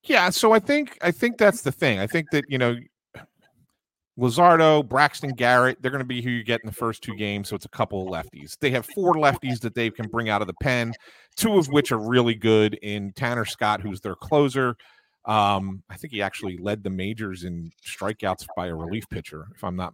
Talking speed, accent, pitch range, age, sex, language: 230 wpm, American, 105-150 Hz, 40-59, male, English